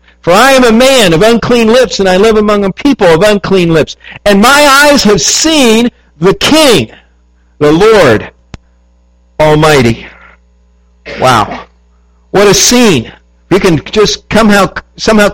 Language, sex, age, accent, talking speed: English, male, 50-69, American, 135 wpm